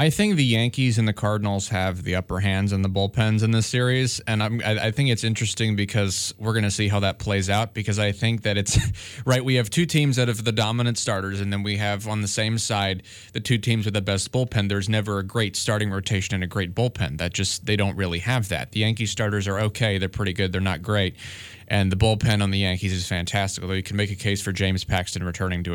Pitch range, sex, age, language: 95-115 Hz, male, 20-39, English